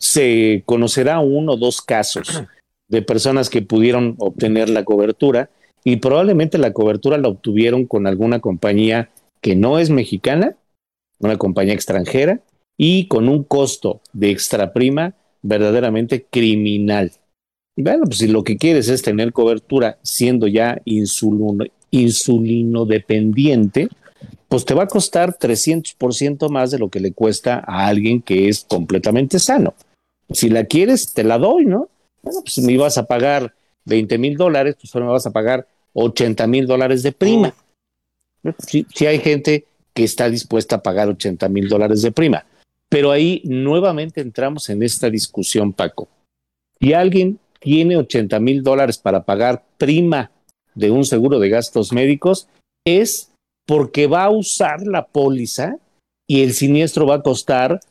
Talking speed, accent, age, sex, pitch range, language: 155 wpm, Mexican, 50-69, male, 110-145 Hz, Spanish